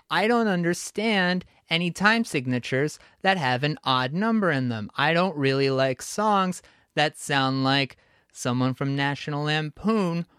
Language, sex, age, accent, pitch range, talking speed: English, male, 30-49, American, 130-160 Hz, 145 wpm